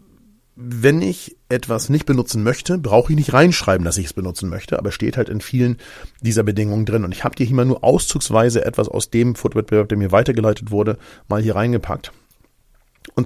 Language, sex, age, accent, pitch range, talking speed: German, male, 40-59, German, 110-145 Hz, 195 wpm